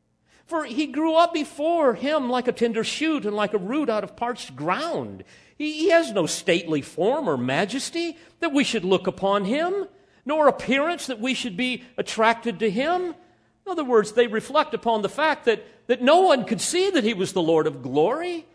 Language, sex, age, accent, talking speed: English, male, 50-69, American, 200 wpm